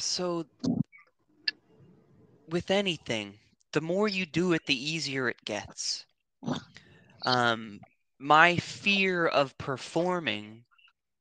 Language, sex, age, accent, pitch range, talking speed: English, male, 20-39, American, 120-160 Hz, 90 wpm